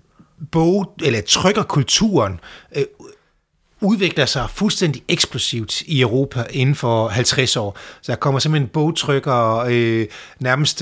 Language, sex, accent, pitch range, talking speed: English, male, Danish, 125-160 Hz, 110 wpm